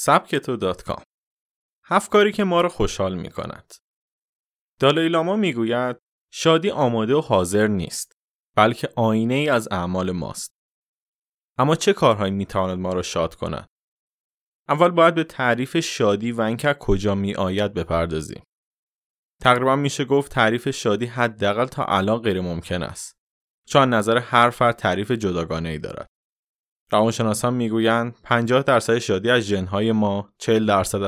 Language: Persian